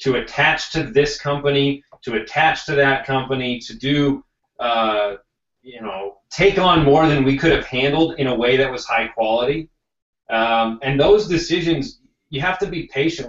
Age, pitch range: 30-49, 120-145 Hz